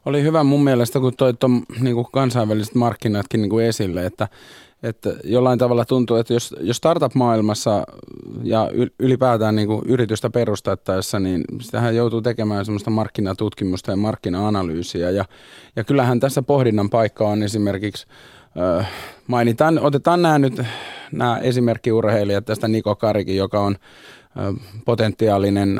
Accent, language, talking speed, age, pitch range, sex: native, Finnish, 130 wpm, 30-49, 100-125 Hz, male